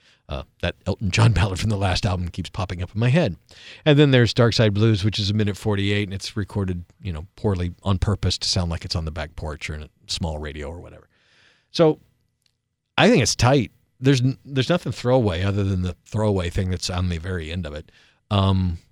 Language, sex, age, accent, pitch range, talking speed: English, male, 50-69, American, 95-120 Hz, 225 wpm